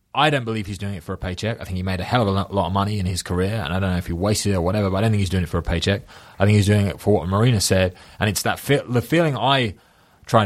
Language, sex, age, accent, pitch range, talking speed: English, male, 20-39, British, 95-115 Hz, 345 wpm